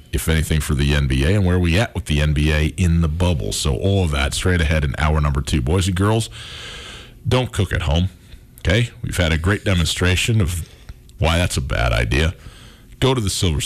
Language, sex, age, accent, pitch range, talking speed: English, male, 40-59, American, 85-110 Hz, 215 wpm